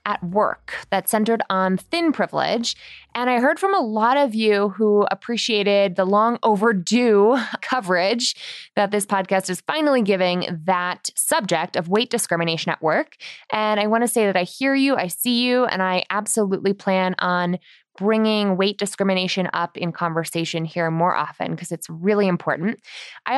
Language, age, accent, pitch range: English, 20-39, American, 180-235 Hz